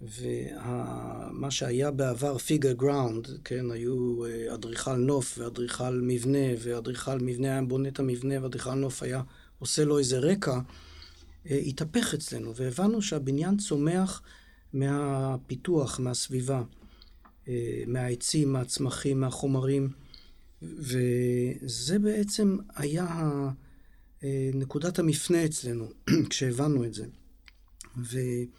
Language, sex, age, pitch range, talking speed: Hebrew, male, 50-69, 125-155 Hz, 95 wpm